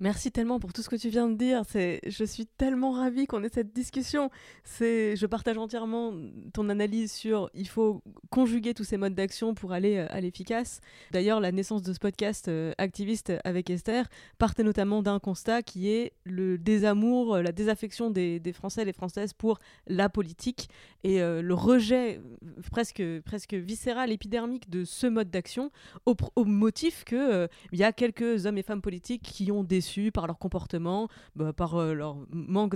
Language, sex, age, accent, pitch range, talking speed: French, female, 20-39, French, 185-225 Hz, 185 wpm